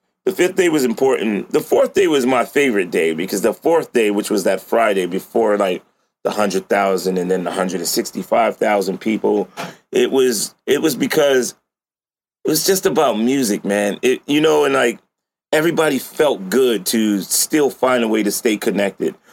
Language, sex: English, male